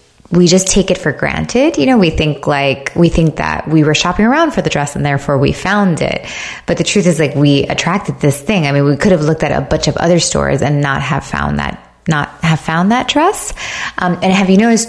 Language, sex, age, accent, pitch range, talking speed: English, female, 20-39, American, 150-190 Hz, 250 wpm